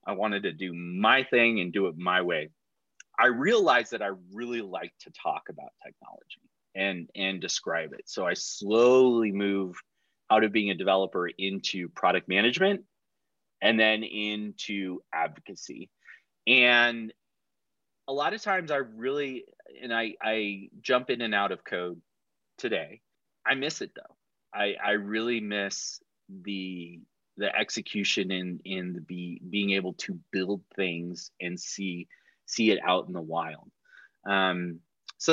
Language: English